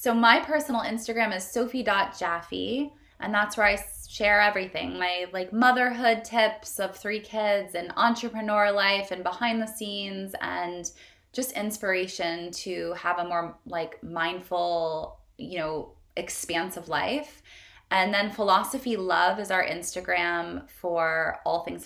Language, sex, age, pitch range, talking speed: English, female, 20-39, 170-210 Hz, 135 wpm